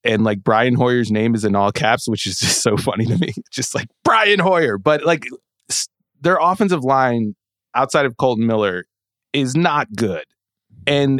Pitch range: 105-140 Hz